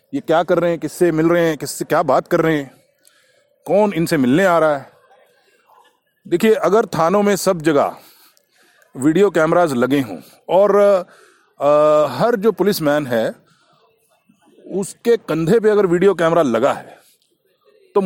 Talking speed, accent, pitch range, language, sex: 155 wpm, native, 175-250 Hz, Hindi, male